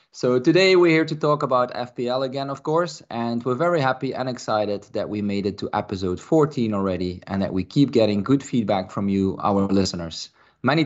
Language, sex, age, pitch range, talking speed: English, male, 20-39, 100-140 Hz, 205 wpm